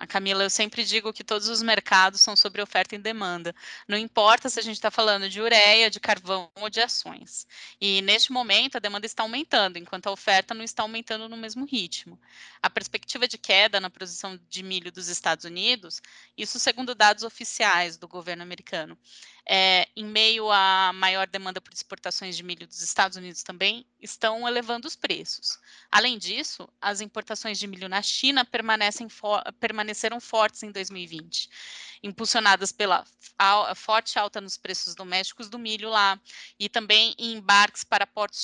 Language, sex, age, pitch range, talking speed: English, female, 10-29, 195-225 Hz, 170 wpm